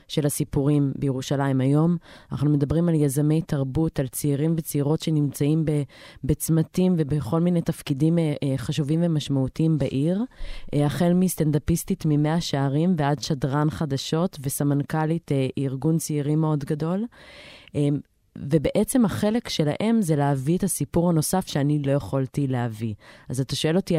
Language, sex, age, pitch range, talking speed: Hebrew, female, 20-39, 145-175 Hz, 120 wpm